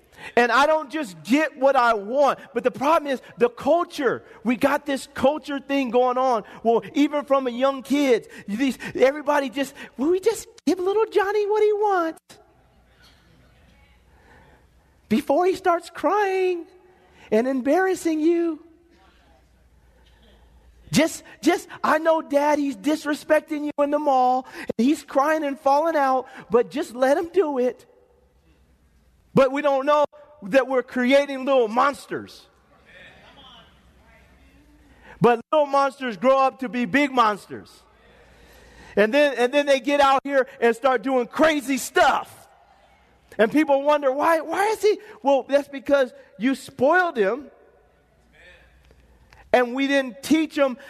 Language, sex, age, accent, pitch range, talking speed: English, male, 40-59, American, 250-310 Hz, 140 wpm